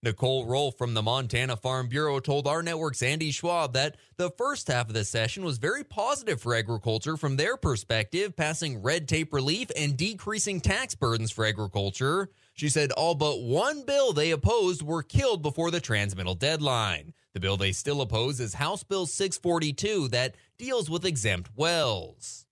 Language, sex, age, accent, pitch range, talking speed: English, male, 30-49, American, 145-205 Hz, 175 wpm